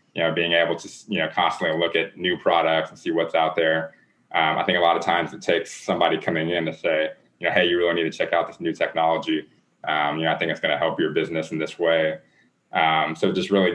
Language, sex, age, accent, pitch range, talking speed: English, male, 20-39, American, 80-85 Hz, 265 wpm